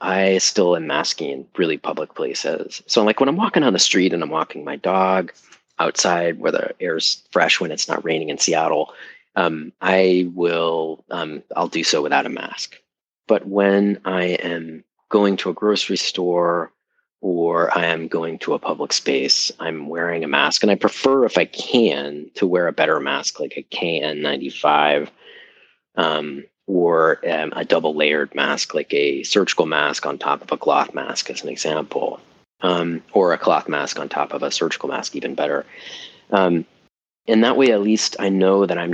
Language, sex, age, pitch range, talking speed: English, male, 40-59, 85-100 Hz, 185 wpm